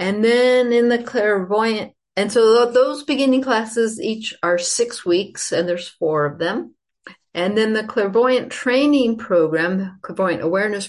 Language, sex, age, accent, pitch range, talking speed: English, female, 50-69, American, 175-235 Hz, 150 wpm